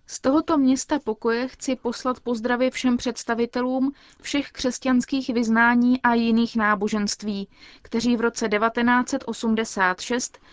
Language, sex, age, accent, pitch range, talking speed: Czech, female, 20-39, native, 220-255 Hz, 110 wpm